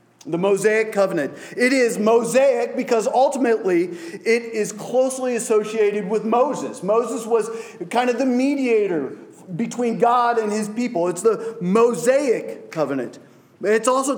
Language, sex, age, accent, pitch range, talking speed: English, male, 40-59, American, 185-240 Hz, 130 wpm